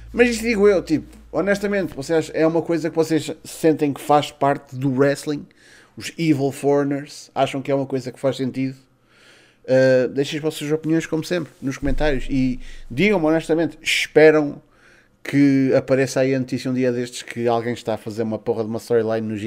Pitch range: 115-150 Hz